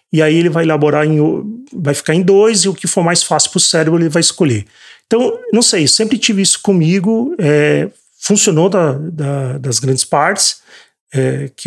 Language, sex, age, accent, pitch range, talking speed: Portuguese, male, 40-59, Brazilian, 145-195 Hz, 195 wpm